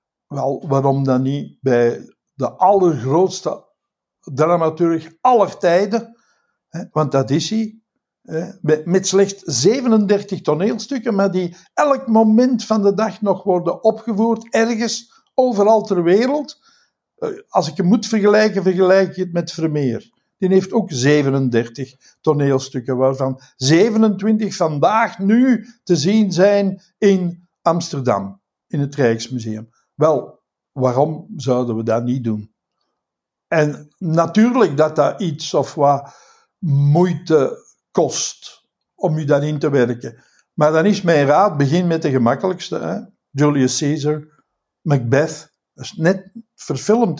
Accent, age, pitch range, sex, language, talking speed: Dutch, 60-79, 140-210 Hz, male, Dutch, 125 wpm